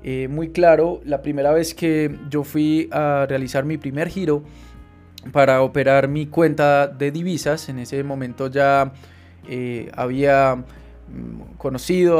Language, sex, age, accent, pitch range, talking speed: Spanish, male, 20-39, Colombian, 135-165 Hz, 135 wpm